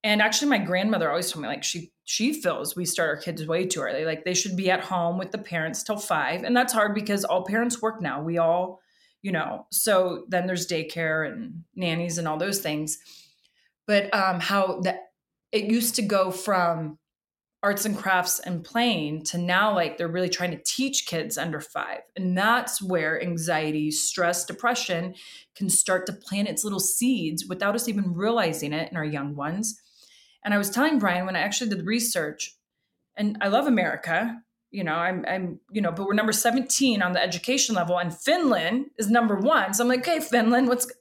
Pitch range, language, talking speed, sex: 175-225 Hz, English, 205 wpm, female